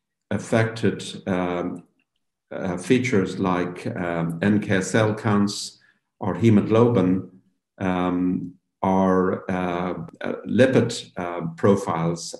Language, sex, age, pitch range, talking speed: English, male, 50-69, 90-100 Hz, 85 wpm